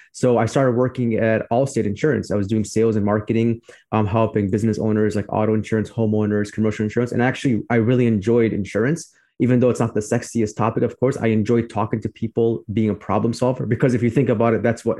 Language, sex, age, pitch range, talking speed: English, male, 20-39, 110-125 Hz, 220 wpm